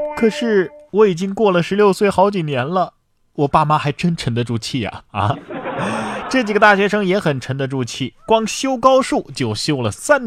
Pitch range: 115-175 Hz